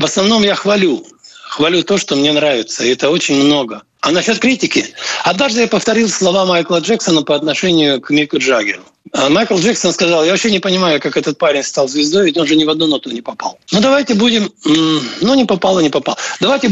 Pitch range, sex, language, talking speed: 150-210 Hz, male, Russian, 210 wpm